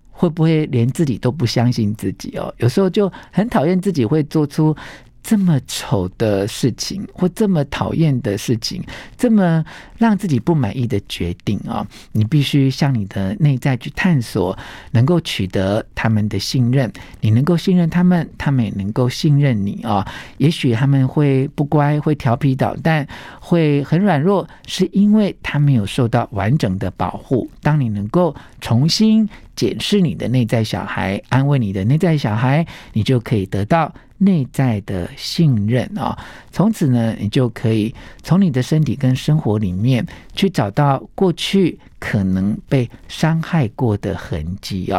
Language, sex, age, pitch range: Chinese, male, 50-69, 110-160 Hz